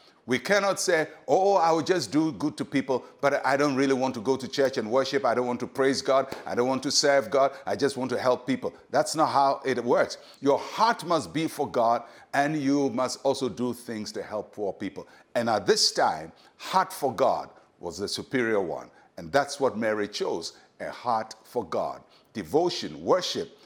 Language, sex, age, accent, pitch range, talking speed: English, male, 60-79, Nigerian, 125-155 Hz, 210 wpm